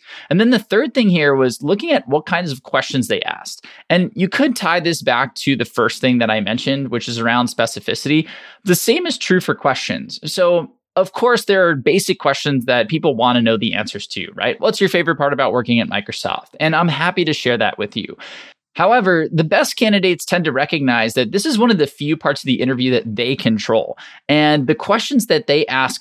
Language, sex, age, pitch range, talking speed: English, male, 20-39, 130-185 Hz, 225 wpm